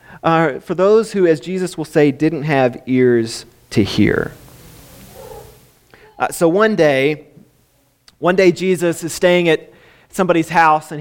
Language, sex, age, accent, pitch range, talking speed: English, male, 30-49, American, 145-185 Hz, 140 wpm